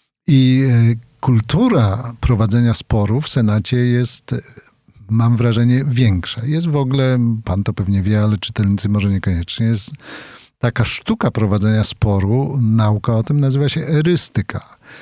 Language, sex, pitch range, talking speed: Polish, male, 110-135 Hz, 130 wpm